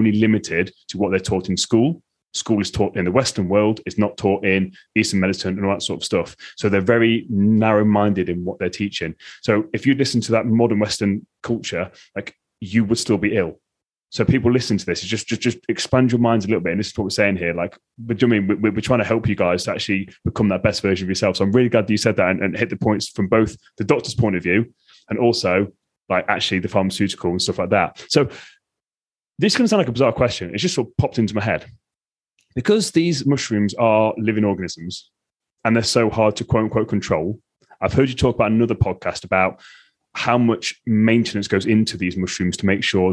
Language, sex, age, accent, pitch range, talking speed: English, male, 30-49, British, 100-115 Hz, 240 wpm